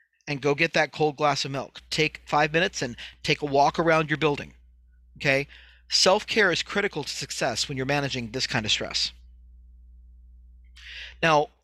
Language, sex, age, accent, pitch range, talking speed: English, male, 40-59, American, 135-165 Hz, 165 wpm